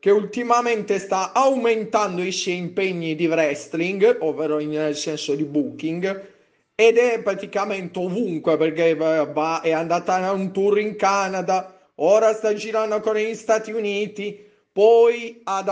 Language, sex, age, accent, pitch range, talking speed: Italian, male, 30-49, native, 160-210 Hz, 145 wpm